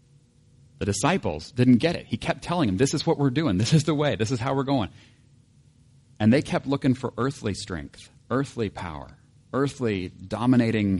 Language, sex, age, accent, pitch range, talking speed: English, male, 40-59, American, 110-140 Hz, 185 wpm